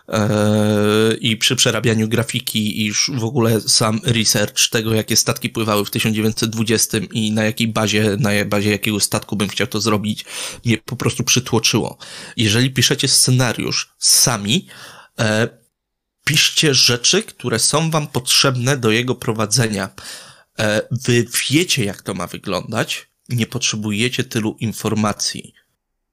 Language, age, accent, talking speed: Polish, 20-39, native, 125 wpm